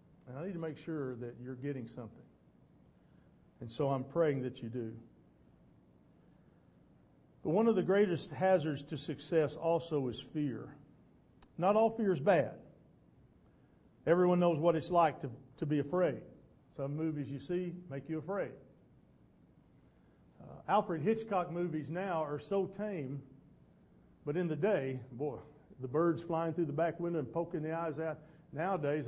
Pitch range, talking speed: 140-180 Hz, 155 wpm